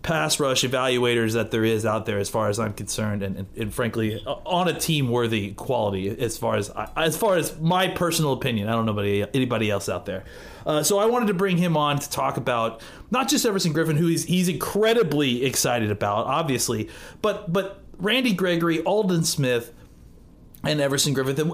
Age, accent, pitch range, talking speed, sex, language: 30-49, American, 115-165 Hz, 195 wpm, male, English